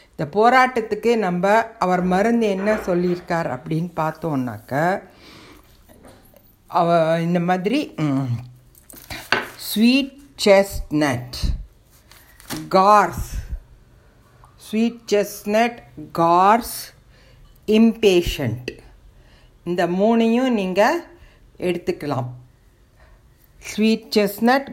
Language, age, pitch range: Tamil, 60-79, 165-220 Hz